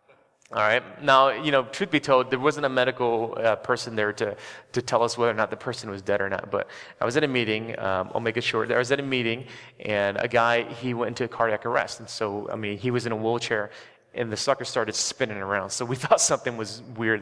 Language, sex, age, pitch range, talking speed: English, male, 30-49, 115-145 Hz, 260 wpm